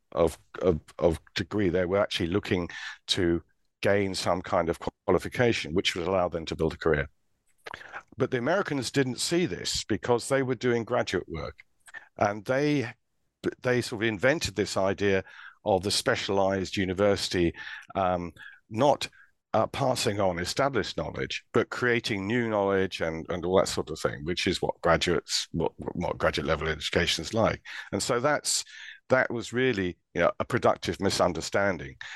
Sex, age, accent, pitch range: male, 50-69, British, 85-110 Hz